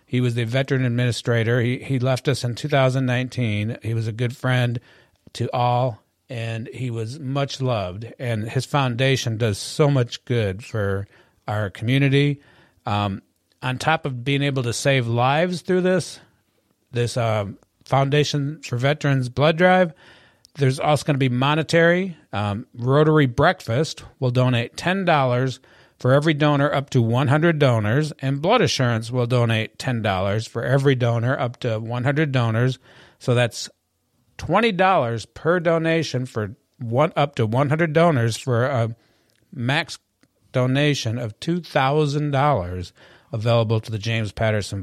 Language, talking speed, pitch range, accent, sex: English, 140 wpm, 115-145 Hz, American, male